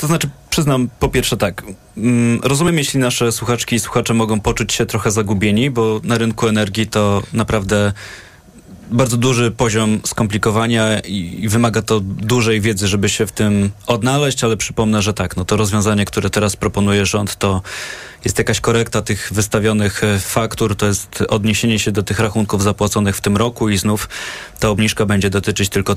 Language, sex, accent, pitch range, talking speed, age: Polish, male, native, 105-125 Hz, 170 wpm, 20-39